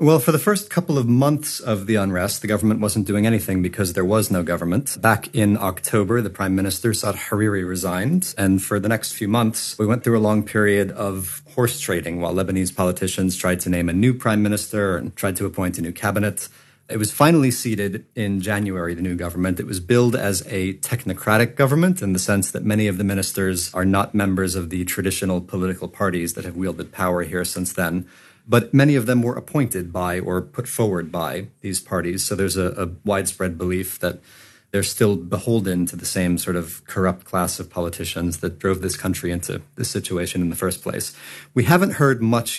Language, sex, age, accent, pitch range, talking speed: English, male, 40-59, American, 90-110 Hz, 205 wpm